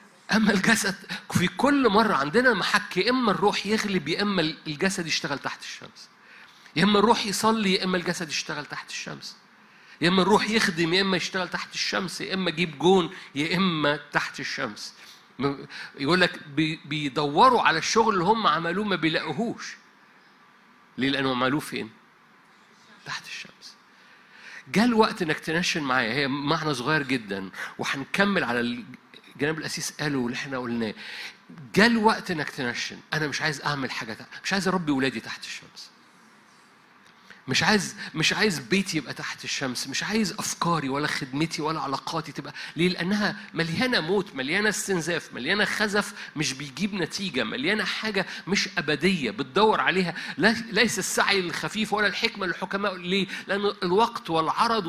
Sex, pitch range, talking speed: male, 155-205 Hz, 150 wpm